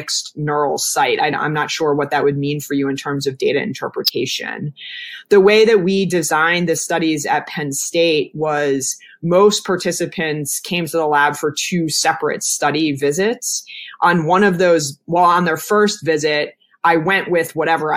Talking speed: 175 wpm